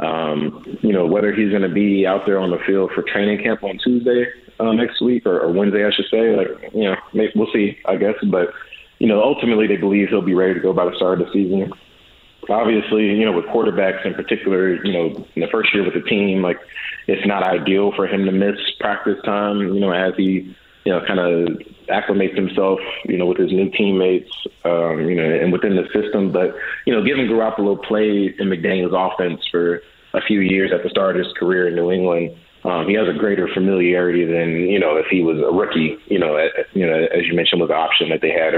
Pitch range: 90-105 Hz